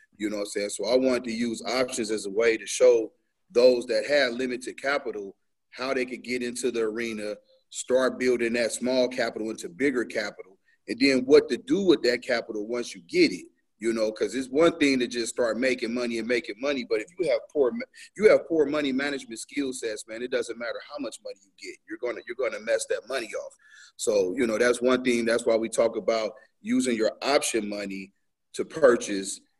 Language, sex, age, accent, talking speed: English, male, 30-49, American, 225 wpm